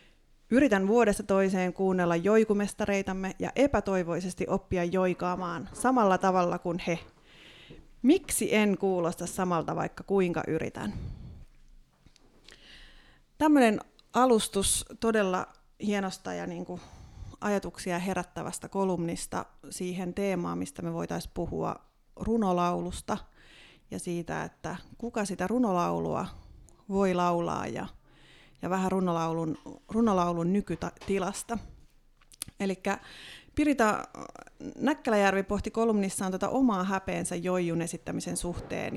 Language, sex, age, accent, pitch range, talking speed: Finnish, female, 30-49, native, 175-205 Hz, 90 wpm